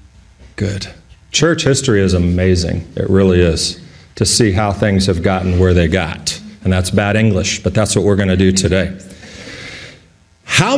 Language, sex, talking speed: English, male, 165 wpm